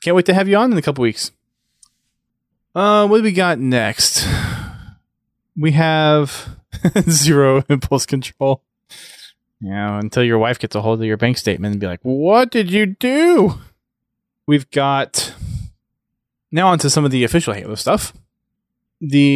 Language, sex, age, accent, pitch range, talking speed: English, male, 20-39, American, 115-150 Hz, 160 wpm